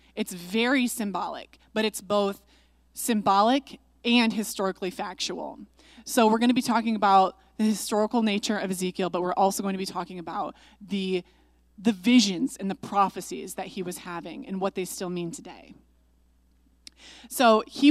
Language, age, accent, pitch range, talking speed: English, 20-39, American, 190-240 Hz, 160 wpm